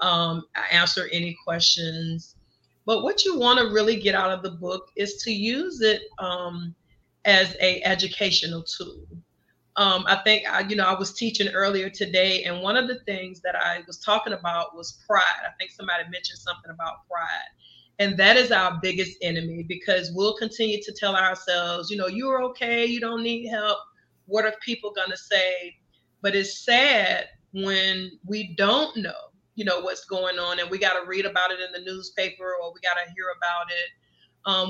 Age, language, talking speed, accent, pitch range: 30-49, English, 190 wpm, American, 180-215 Hz